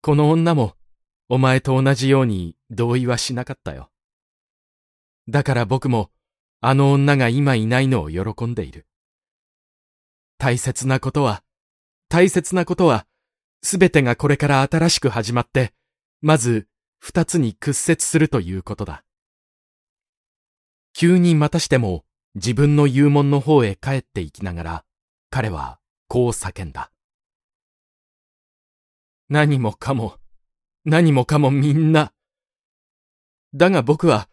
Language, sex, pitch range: Japanese, male, 110-155 Hz